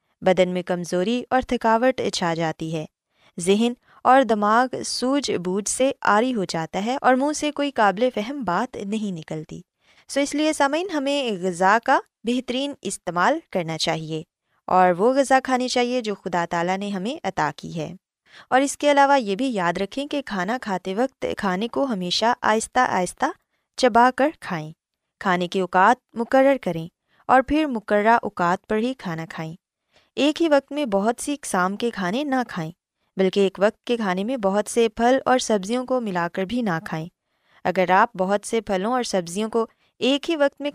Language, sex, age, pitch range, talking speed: Urdu, female, 20-39, 185-260 Hz, 185 wpm